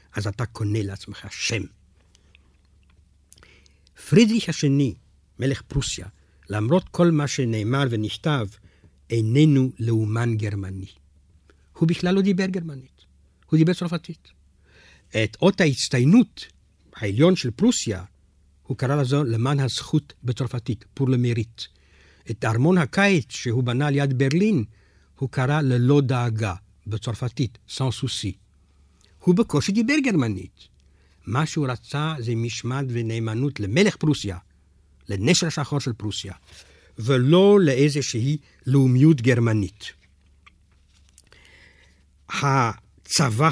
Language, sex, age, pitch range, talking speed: Hebrew, male, 60-79, 90-140 Hz, 100 wpm